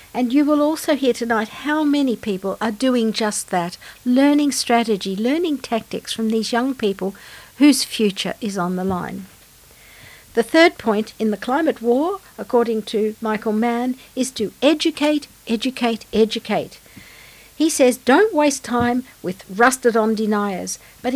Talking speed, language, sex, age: 145 wpm, English, female, 60-79